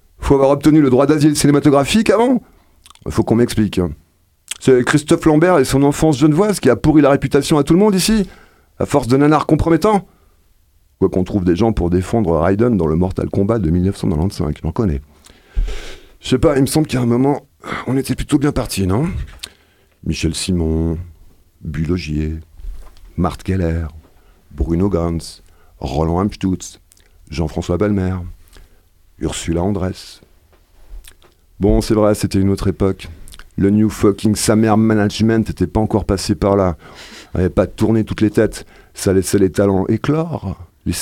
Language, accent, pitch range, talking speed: French, French, 85-115 Hz, 160 wpm